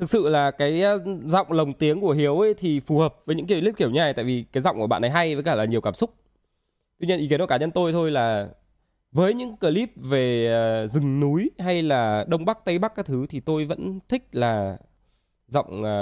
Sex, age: male, 20-39